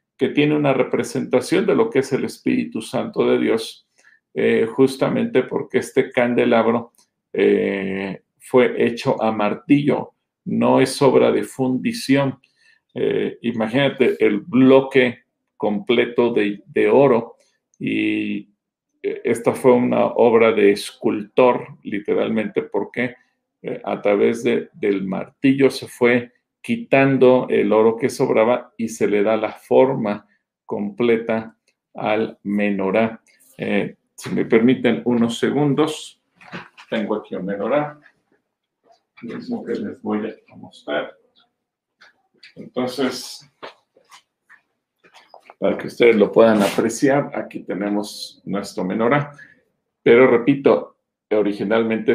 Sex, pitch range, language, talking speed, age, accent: male, 105-135 Hz, Spanish, 110 wpm, 50-69, Mexican